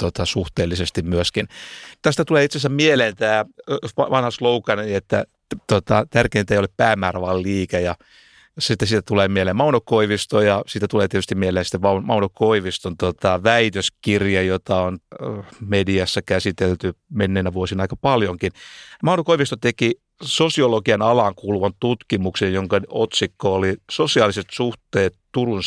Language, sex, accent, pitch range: Finnish, male, native, 95-120 Hz